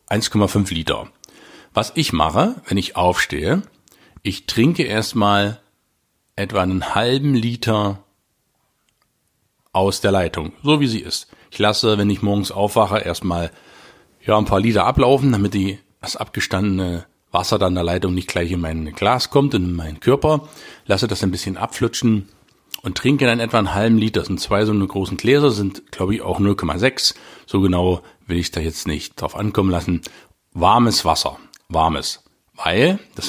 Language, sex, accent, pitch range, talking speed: German, male, German, 90-110 Hz, 160 wpm